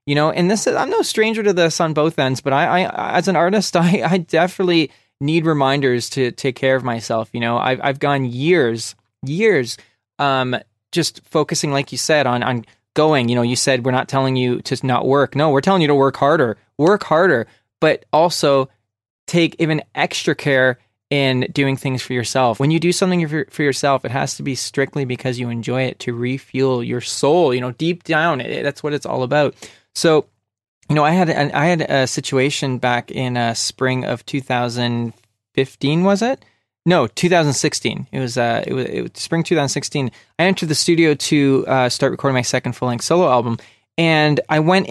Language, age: English, 20-39